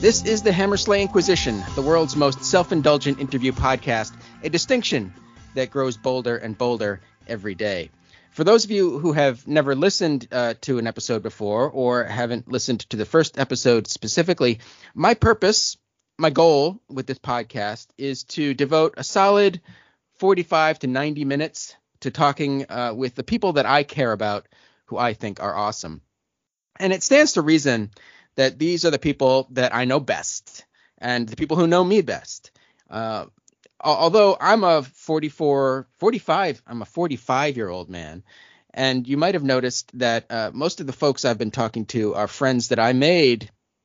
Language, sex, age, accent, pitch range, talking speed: English, male, 30-49, American, 115-160 Hz, 170 wpm